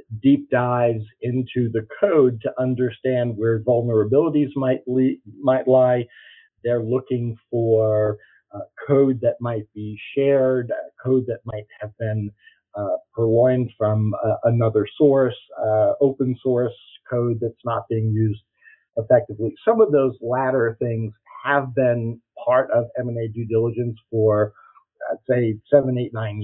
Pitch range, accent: 110-125 Hz, American